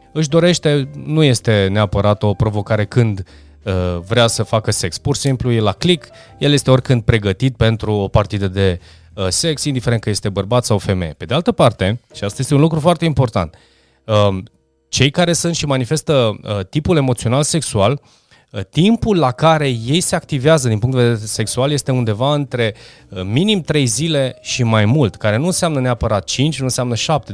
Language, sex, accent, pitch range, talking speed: Romanian, male, native, 105-145 Hz, 175 wpm